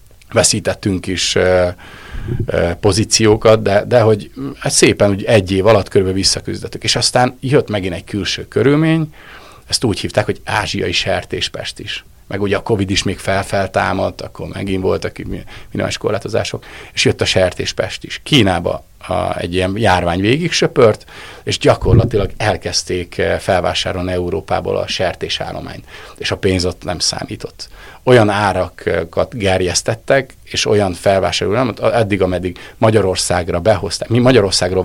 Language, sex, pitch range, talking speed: Hungarian, male, 90-110 Hz, 135 wpm